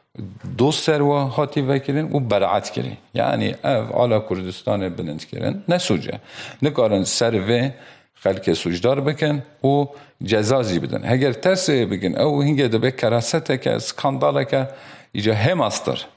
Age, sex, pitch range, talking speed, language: 50-69, male, 95-140 Hz, 135 wpm, Turkish